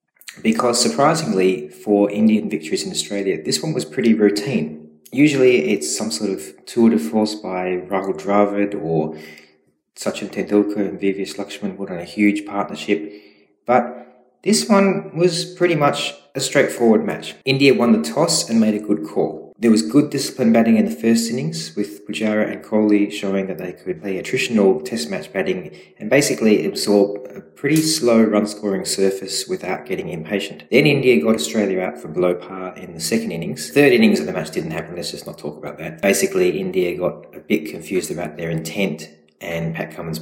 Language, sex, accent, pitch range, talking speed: English, male, Australian, 85-125 Hz, 185 wpm